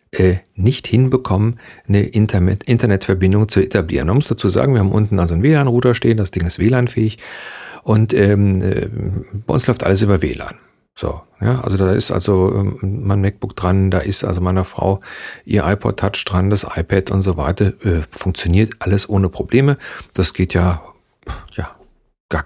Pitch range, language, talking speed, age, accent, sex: 95-110 Hz, German, 170 wpm, 40-59, German, male